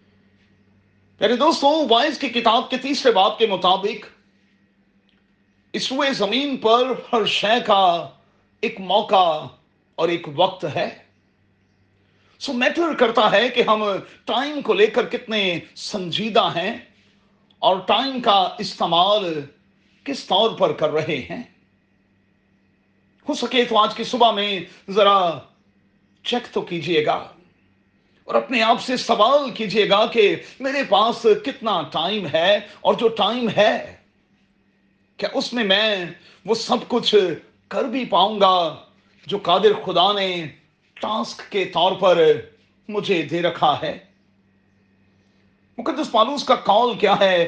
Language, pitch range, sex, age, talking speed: Urdu, 170-245 Hz, male, 40-59, 130 wpm